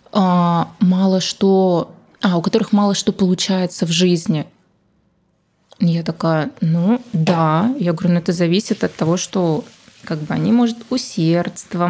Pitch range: 170-210 Hz